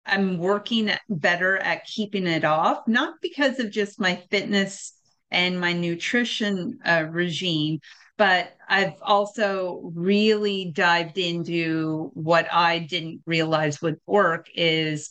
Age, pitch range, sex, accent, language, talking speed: 30-49, 170-205 Hz, female, American, English, 125 wpm